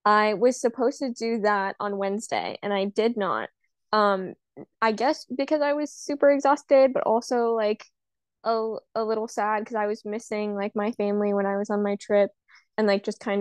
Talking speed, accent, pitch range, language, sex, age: 195 wpm, American, 195-230 Hz, English, female, 10-29